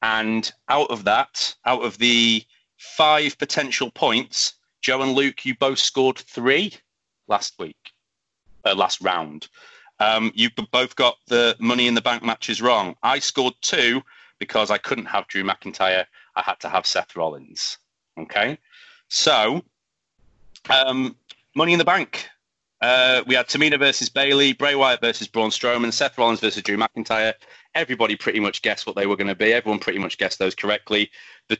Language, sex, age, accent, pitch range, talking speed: English, male, 30-49, British, 110-130 Hz, 165 wpm